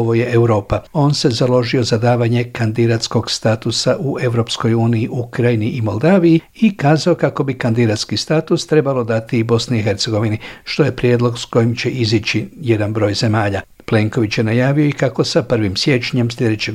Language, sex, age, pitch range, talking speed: Croatian, male, 60-79, 100-125 Hz, 170 wpm